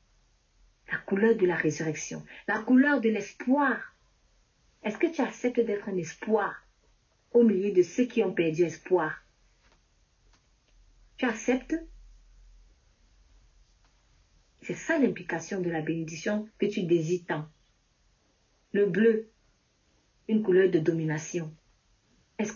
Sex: female